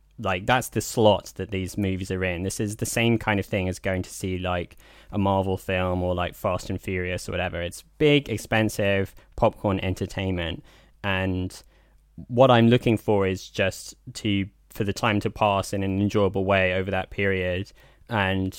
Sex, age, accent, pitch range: male, 10-29, British, 95-105 Hz